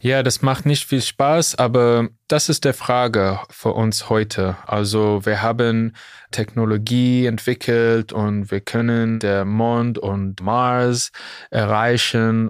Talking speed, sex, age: 130 wpm, male, 20-39